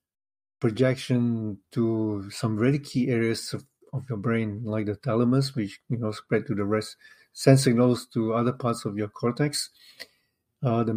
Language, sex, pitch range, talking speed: English, male, 115-135 Hz, 165 wpm